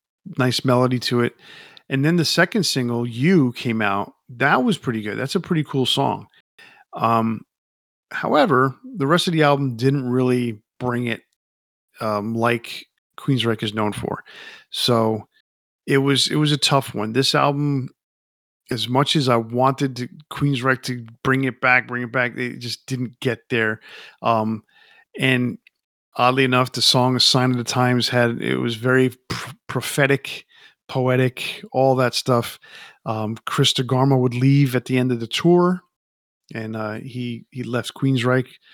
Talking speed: 165 wpm